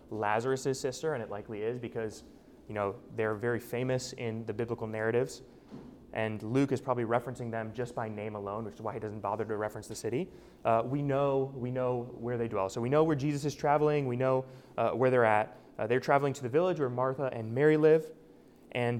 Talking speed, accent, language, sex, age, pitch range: 220 wpm, American, English, male, 20-39, 110-135 Hz